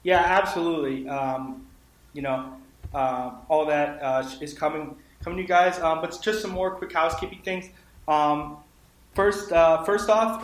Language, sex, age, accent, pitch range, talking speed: English, male, 20-39, American, 140-165 Hz, 160 wpm